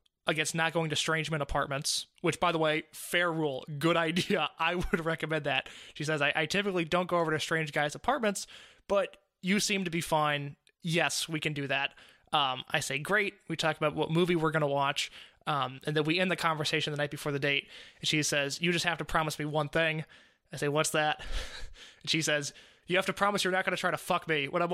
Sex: male